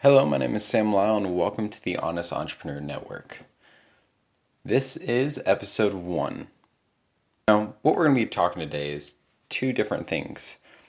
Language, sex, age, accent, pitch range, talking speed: English, male, 20-39, American, 85-110 Hz, 160 wpm